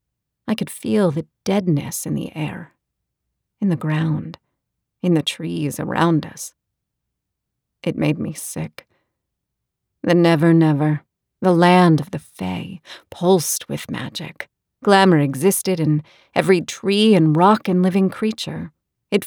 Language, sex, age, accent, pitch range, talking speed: English, female, 40-59, American, 150-185 Hz, 130 wpm